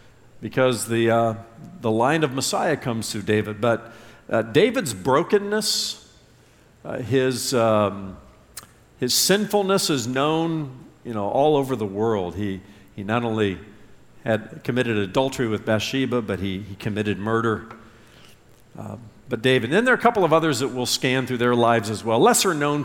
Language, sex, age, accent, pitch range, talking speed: English, male, 50-69, American, 110-145 Hz, 160 wpm